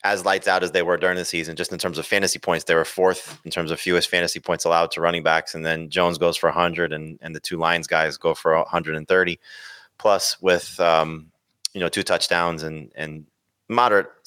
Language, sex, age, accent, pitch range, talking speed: English, male, 30-49, American, 85-95 Hz, 225 wpm